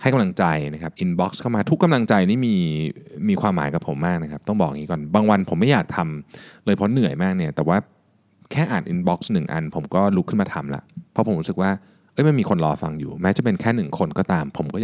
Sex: male